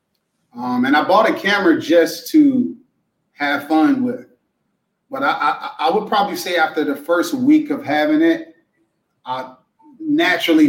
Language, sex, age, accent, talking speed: English, male, 30-49, American, 155 wpm